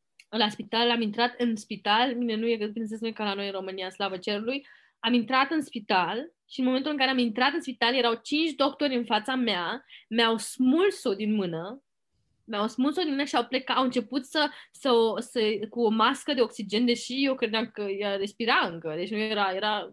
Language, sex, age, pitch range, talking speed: Romanian, female, 20-39, 215-255 Hz, 210 wpm